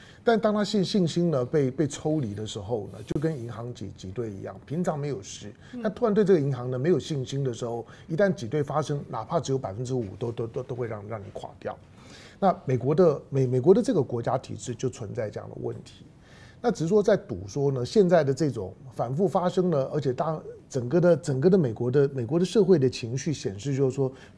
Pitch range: 125-185 Hz